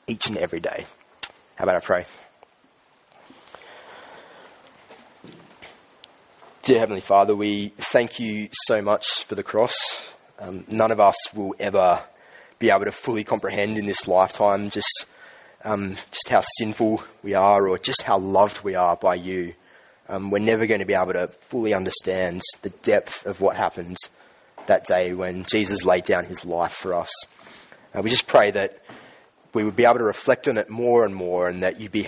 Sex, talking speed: male, 175 wpm